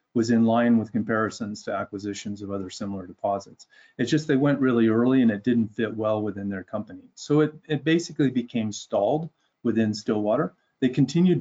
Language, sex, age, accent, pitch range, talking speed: English, male, 30-49, American, 105-130 Hz, 185 wpm